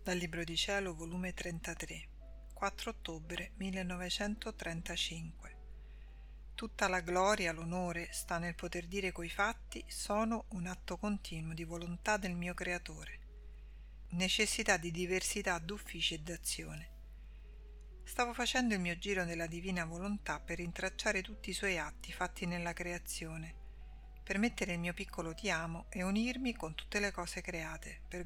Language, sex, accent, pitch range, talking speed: Italian, female, native, 160-195 Hz, 140 wpm